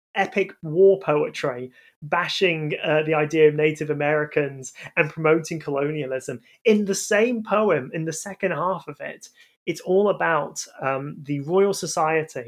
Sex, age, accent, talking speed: male, 30-49, British, 145 wpm